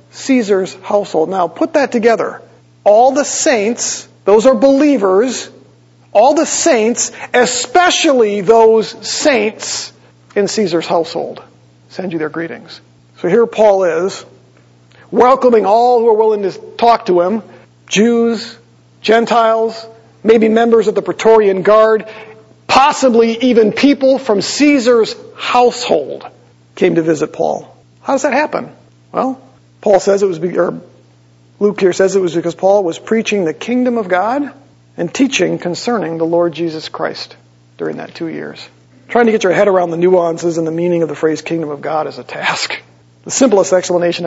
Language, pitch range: English, 155-225 Hz